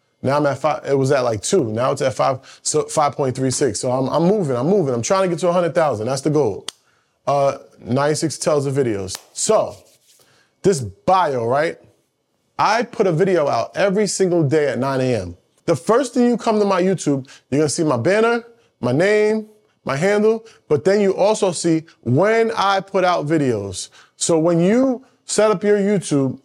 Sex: male